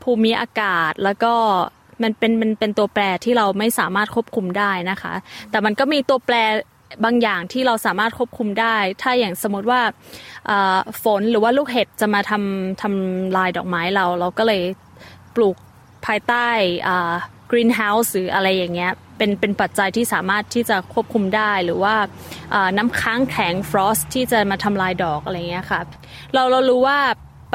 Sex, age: female, 20-39